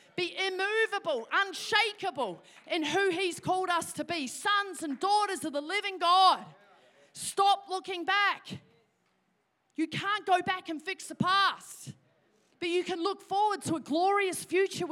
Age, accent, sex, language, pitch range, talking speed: 40-59, Australian, female, English, 300-370 Hz, 150 wpm